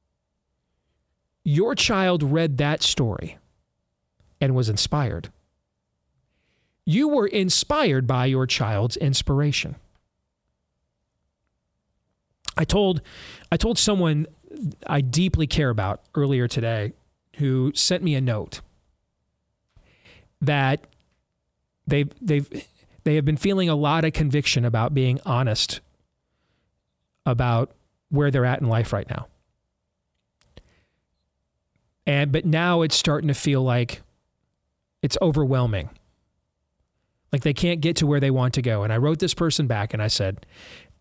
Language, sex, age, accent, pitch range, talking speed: English, male, 40-59, American, 100-155 Hz, 120 wpm